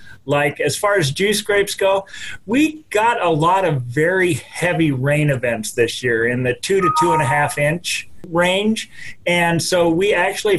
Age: 40-59